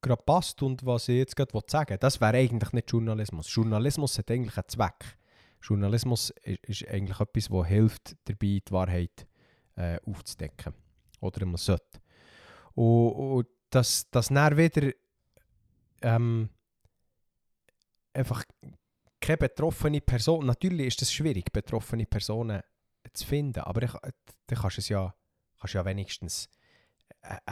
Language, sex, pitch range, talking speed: German, male, 100-130 Hz, 125 wpm